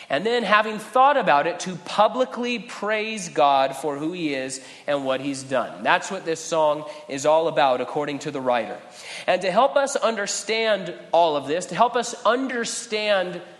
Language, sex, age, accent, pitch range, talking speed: English, male, 30-49, American, 145-195 Hz, 180 wpm